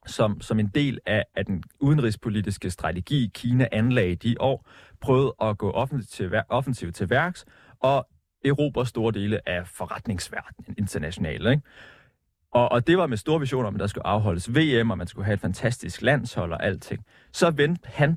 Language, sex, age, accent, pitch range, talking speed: Danish, male, 30-49, native, 105-140 Hz, 180 wpm